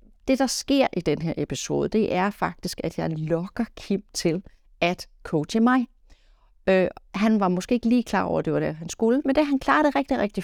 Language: Danish